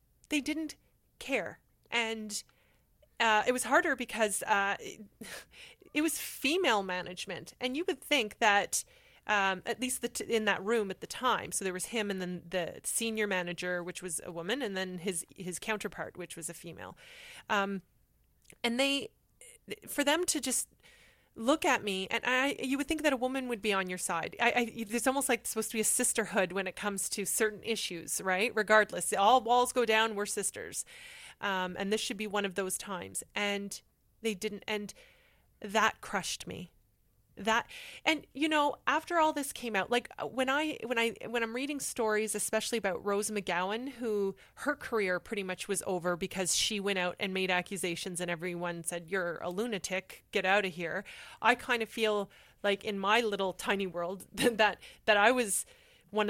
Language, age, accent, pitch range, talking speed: English, 30-49, American, 190-245 Hz, 190 wpm